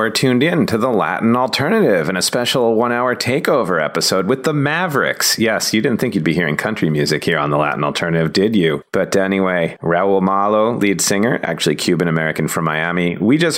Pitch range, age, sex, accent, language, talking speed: 85-115 Hz, 30-49, male, American, English, 190 wpm